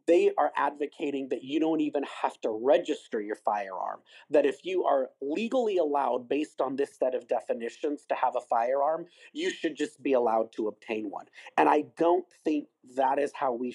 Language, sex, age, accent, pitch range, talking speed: English, male, 40-59, American, 130-175 Hz, 190 wpm